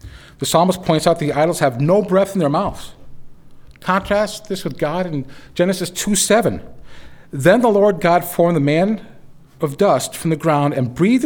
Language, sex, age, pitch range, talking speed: English, male, 40-59, 135-175 Hz, 185 wpm